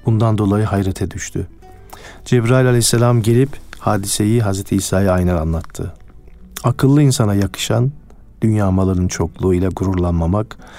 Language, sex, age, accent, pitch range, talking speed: Turkish, male, 50-69, native, 90-115 Hz, 105 wpm